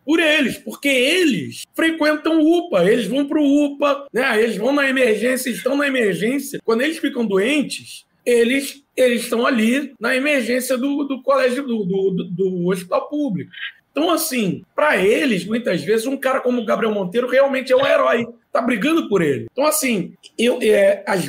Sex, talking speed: male, 170 wpm